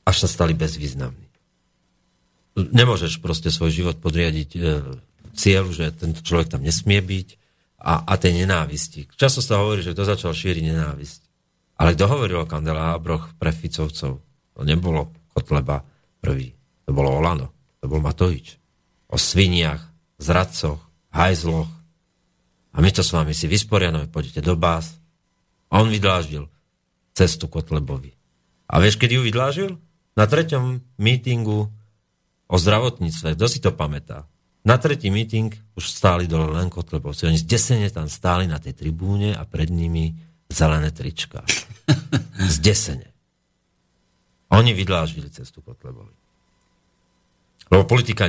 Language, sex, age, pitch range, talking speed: Slovak, male, 50-69, 80-105 Hz, 135 wpm